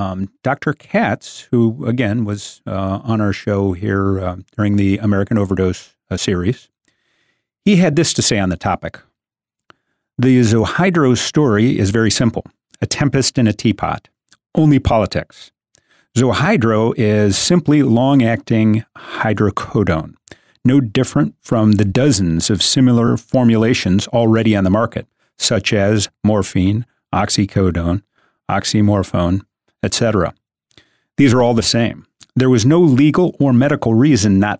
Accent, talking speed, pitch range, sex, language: American, 130 wpm, 100-125 Hz, male, English